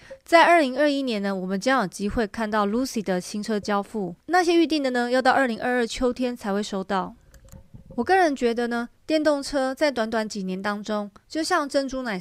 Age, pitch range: 30-49, 200-265 Hz